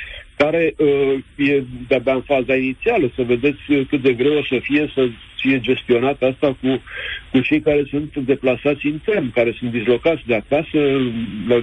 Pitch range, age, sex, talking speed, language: 120-145 Hz, 60-79, male, 170 wpm, Romanian